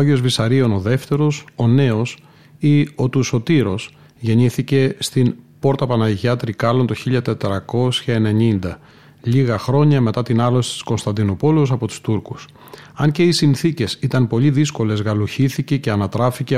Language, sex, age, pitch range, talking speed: Greek, male, 40-59, 115-145 Hz, 135 wpm